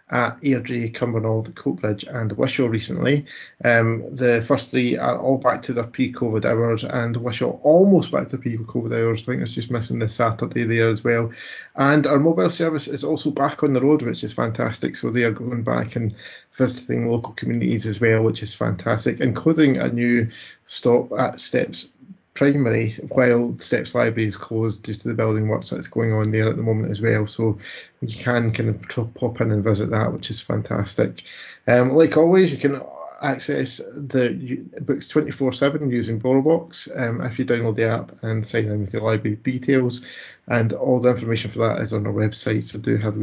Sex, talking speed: male, 195 wpm